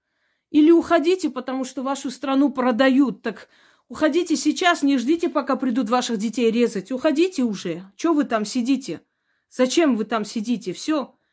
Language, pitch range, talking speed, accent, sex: Russian, 185-255 Hz, 155 wpm, native, female